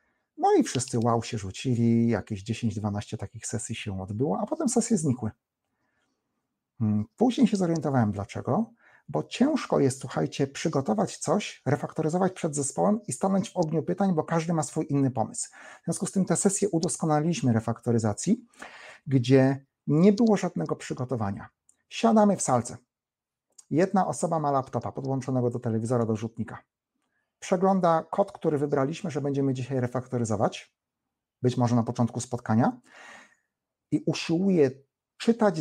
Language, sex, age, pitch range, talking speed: Polish, male, 40-59, 120-170 Hz, 135 wpm